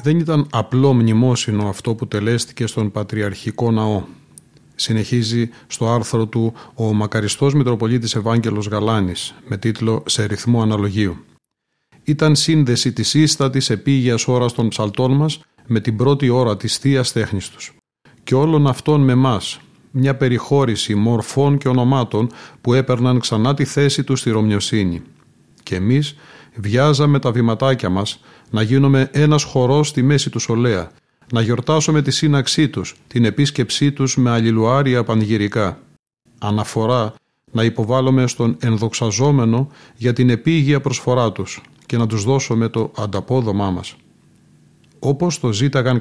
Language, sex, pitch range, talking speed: Greek, male, 110-135 Hz, 135 wpm